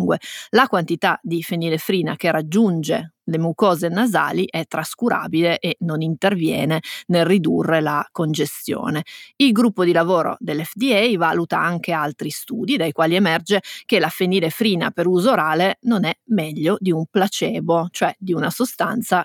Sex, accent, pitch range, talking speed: female, native, 165-205 Hz, 145 wpm